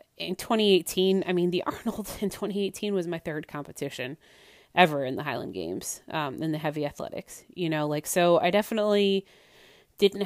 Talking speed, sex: 170 wpm, female